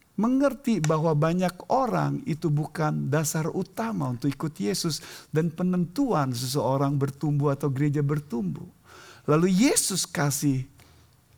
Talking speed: 110 wpm